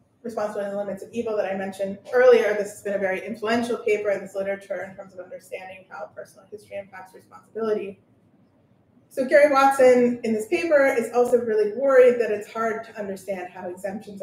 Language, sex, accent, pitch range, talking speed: English, female, American, 190-235 Hz, 195 wpm